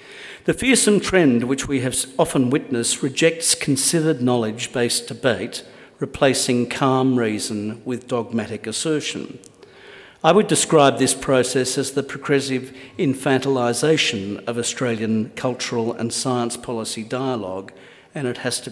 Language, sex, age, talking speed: English, male, 50-69, 120 wpm